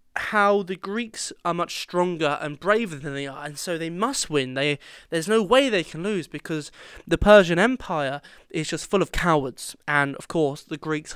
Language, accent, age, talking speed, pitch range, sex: English, British, 20-39, 200 wpm, 145-205 Hz, male